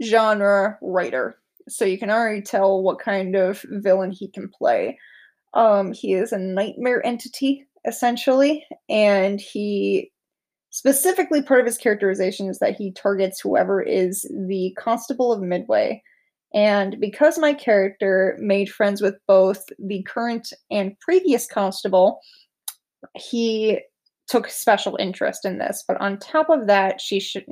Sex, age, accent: female, 20-39, American